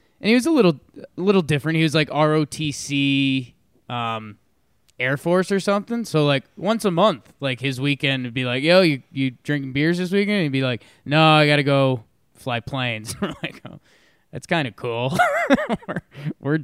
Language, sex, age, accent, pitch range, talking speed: English, male, 20-39, American, 125-160 Hz, 200 wpm